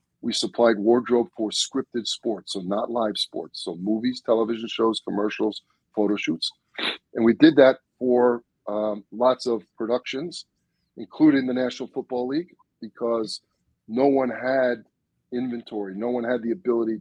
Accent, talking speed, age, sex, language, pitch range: American, 145 wpm, 50-69, male, English, 110-125 Hz